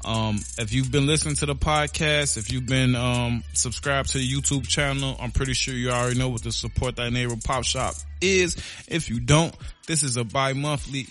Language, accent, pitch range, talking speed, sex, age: English, American, 125-150 Hz, 205 wpm, male, 20-39